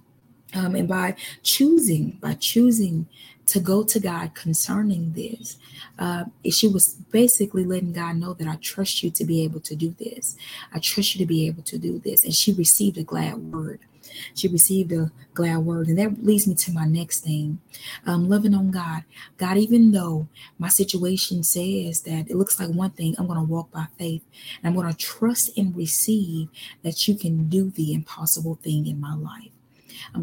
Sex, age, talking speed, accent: female, 20-39, 195 wpm, American